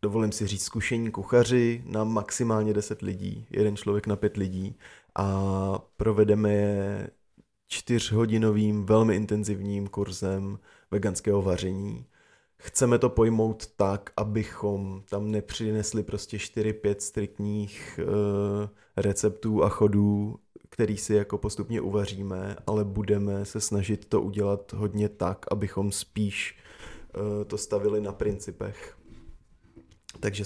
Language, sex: Czech, male